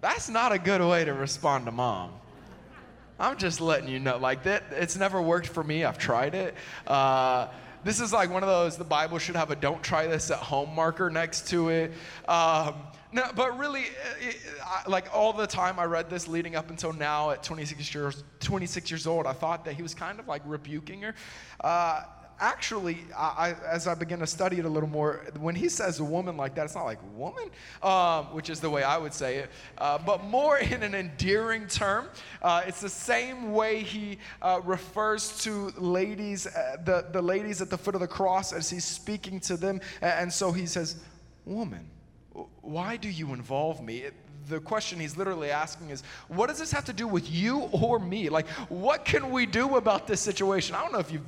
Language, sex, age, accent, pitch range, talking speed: English, male, 20-39, American, 160-200 Hz, 210 wpm